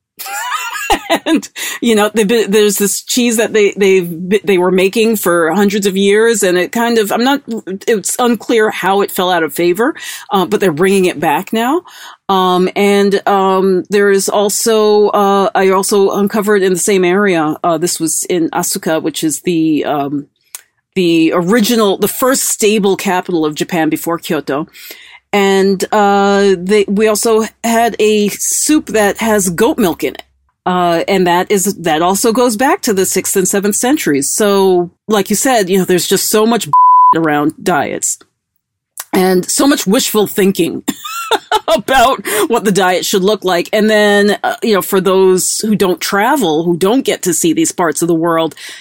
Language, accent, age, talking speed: English, American, 40-59, 175 wpm